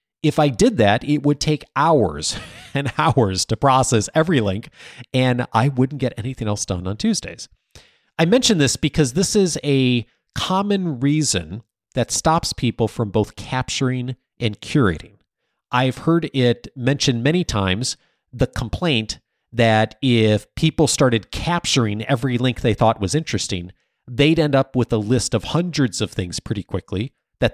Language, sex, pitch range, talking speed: English, male, 105-145 Hz, 155 wpm